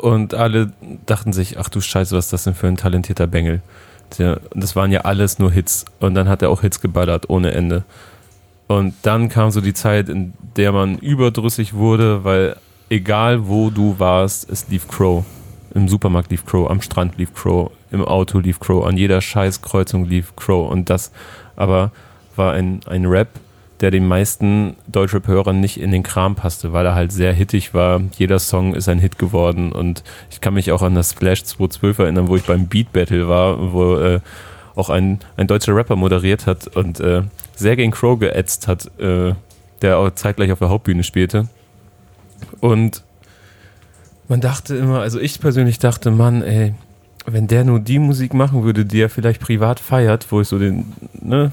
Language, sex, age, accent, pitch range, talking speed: German, male, 30-49, German, 95-110 Hz, 185 wpm